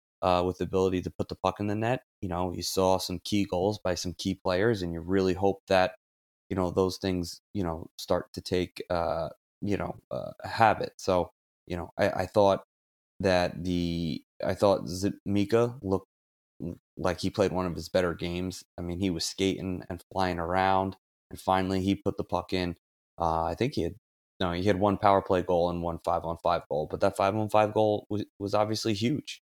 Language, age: English, 20-39